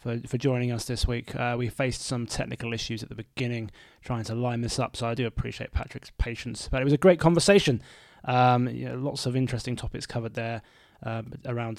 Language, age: English, 20-39